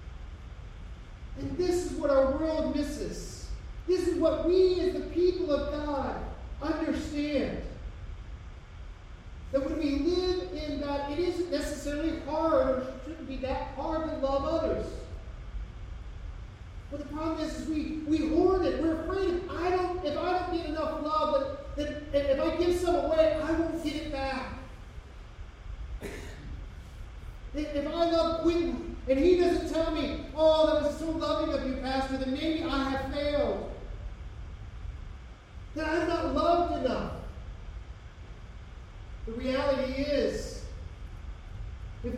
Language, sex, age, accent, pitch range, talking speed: English, male, 40-59, American, 190-315 Hz, 140 wpm